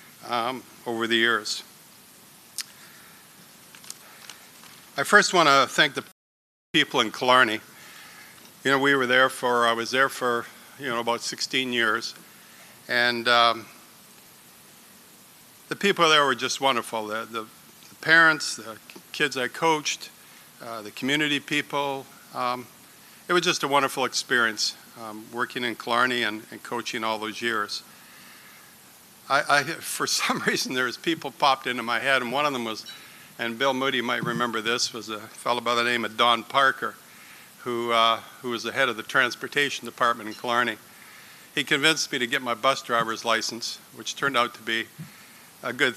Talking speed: 165 wpm